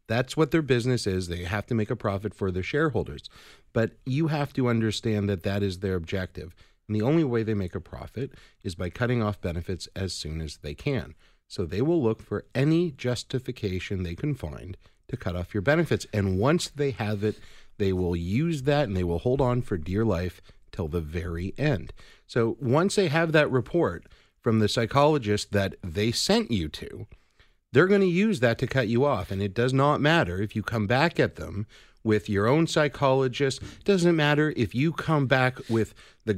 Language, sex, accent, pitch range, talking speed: English, male, American, 95-135 Hz, 205 wpm